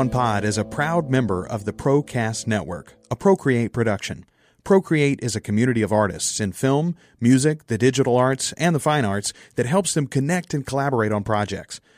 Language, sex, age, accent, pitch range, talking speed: English, male, 40-59, American, 110-145 Hz, 180 wpm